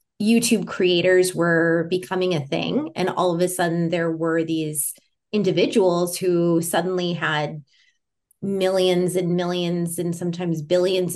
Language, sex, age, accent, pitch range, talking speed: English, female, 20-39, American, 165-185 Hz, 130 wpm